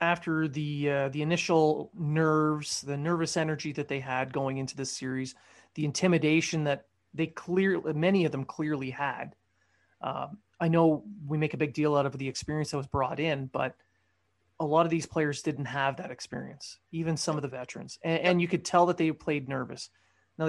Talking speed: 195 wpm